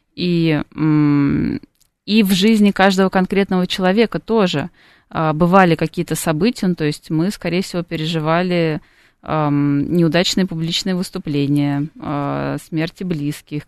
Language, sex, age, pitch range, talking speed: Russian, female, 20-39, 155-185 Hz, 95 wpm